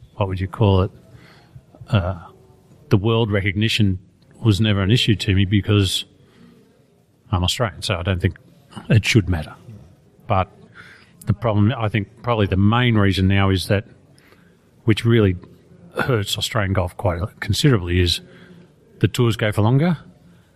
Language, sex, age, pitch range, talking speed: English, male, 40-59, 100-120 Hz, 145 wpm